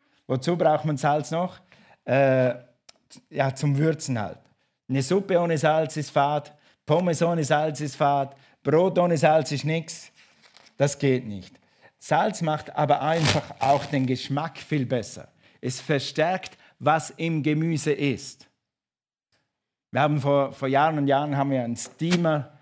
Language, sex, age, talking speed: German, male, 50-69, 145 wpm